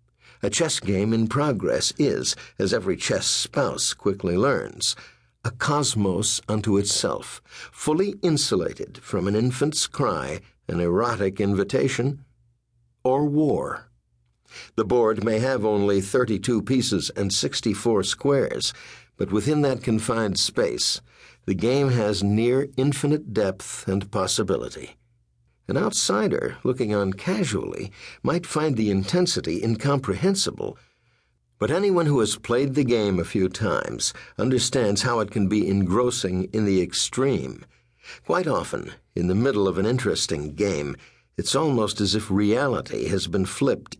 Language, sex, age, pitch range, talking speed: English, male, 60-79, 95-130 Hz, 130 wpm